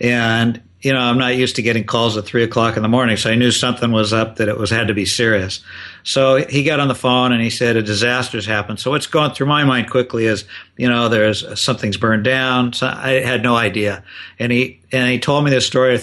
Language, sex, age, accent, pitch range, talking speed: English, male, 60-79, American, 110-125 Hz, 260 wpm